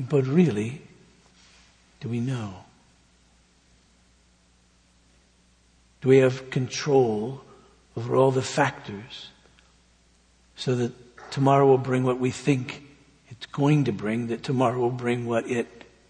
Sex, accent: male, American